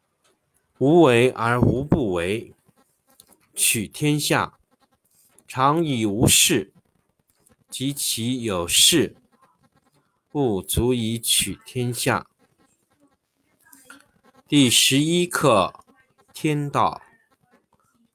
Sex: male